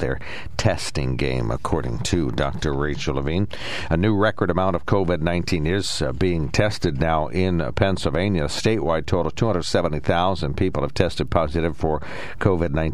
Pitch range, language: 75-95 Hz, English